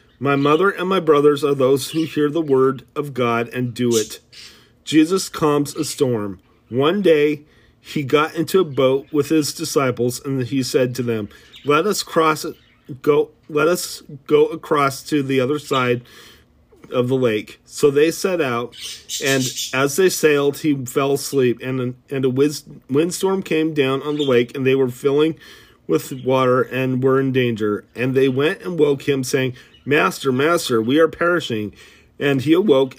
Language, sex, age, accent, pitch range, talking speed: English, male, 40-59, American, 125-150 Hz, 175 wpm